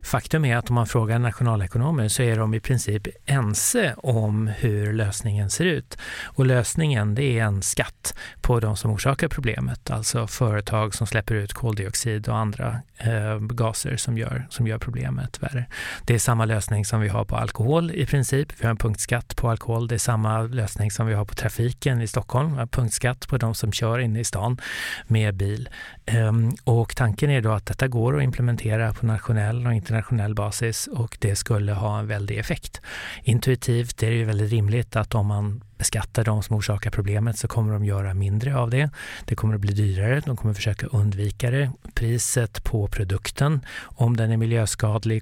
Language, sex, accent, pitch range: Swedish, male, native, 105-120 Hz